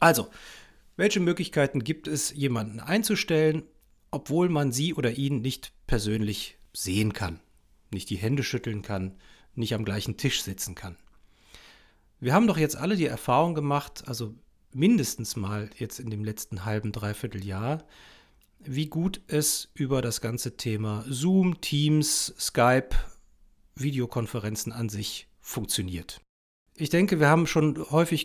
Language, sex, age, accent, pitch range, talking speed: German, male, 40-59, German, 110-150 Hz, 140 wpm